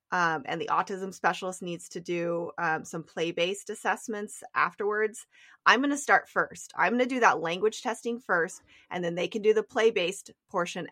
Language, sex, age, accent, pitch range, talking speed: English, female, 20-39, American, 170-215 Hz, 185 wpm